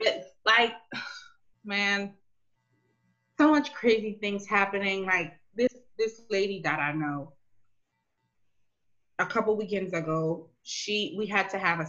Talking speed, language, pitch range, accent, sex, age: 125 wpm, English, 160-235 Hz, American, female, 20-39